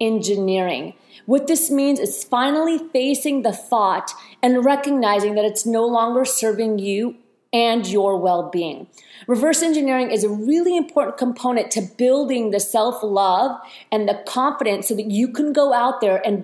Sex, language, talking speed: female, English, 155 wpm